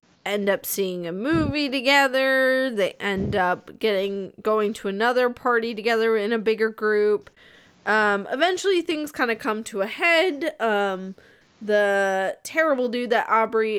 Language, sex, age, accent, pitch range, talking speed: English, female, 20-39, American, 195-240 Hz, 150 wpm